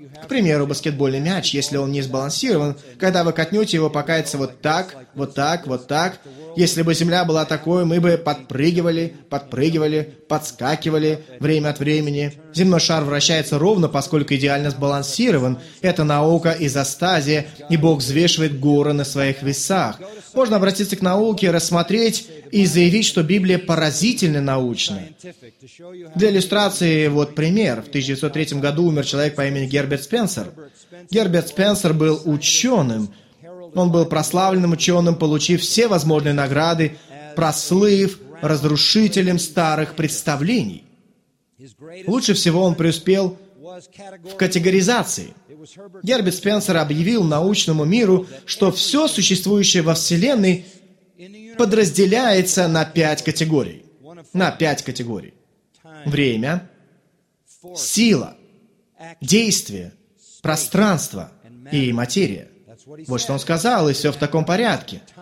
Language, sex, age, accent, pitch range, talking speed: Russian, male, 20-39, native, 150-185 Hz, 115 wpm